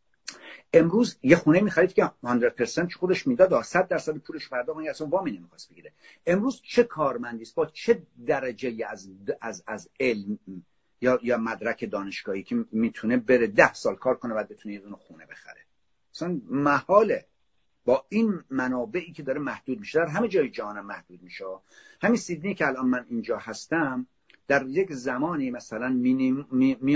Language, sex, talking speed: Persian, male, 155 wpm